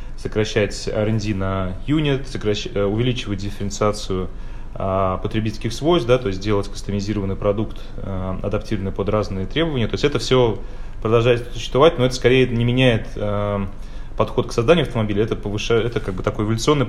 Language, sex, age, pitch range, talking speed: Russian, male, 20-39, 100-120 Hz, 155 wpm